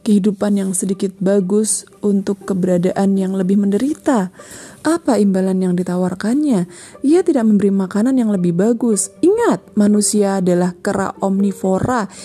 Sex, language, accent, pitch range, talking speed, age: female, Indonesian, native, 180-230 Hz, 120 wpm, 30-49